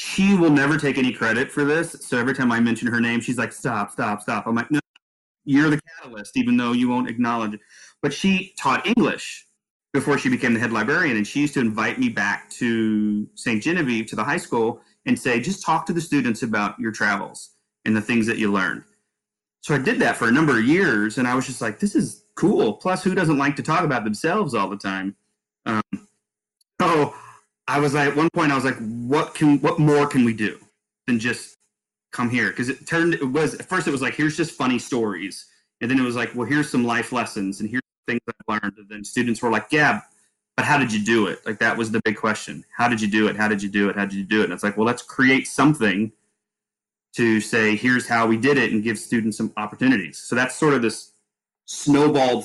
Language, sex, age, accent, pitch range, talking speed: English, male, 30-49, American, 110-145 Hz, 240 wpm